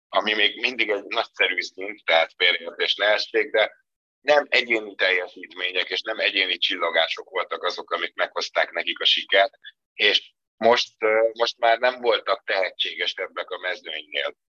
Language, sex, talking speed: Hungarian, male, 145 wpm